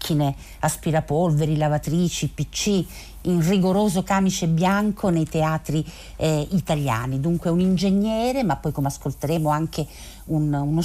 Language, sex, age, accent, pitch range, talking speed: Italian, female, 50-69, native, 155-205 Hz, 110 wpm